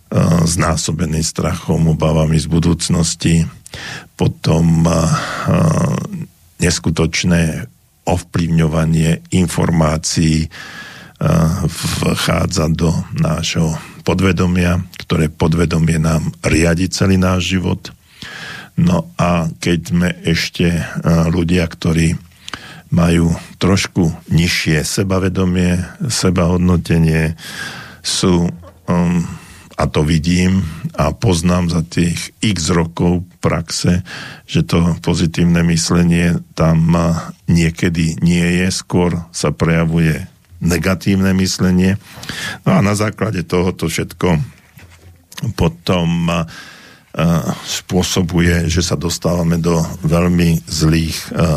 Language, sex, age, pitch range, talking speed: Slovak, male, 50-69, 80-90 Hz, 85 wpm